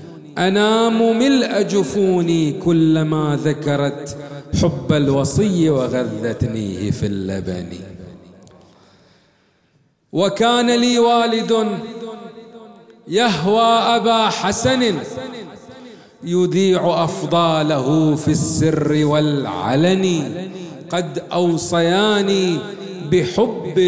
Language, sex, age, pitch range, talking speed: English, male, 40-59, 150-215 Hz, 60 wpm